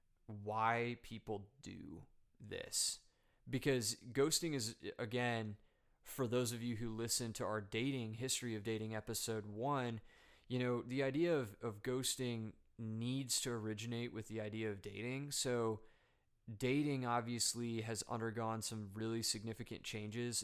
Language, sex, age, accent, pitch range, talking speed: English, male, 20-39, American, 110-120 Hz, 135 wpm